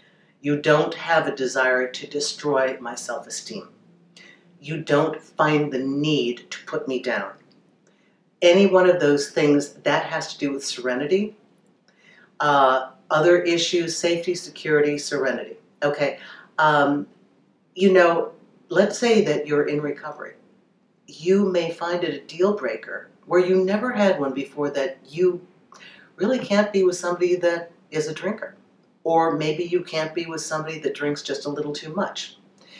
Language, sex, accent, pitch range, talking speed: English, female, American, 145-195 Hz, 150 wpm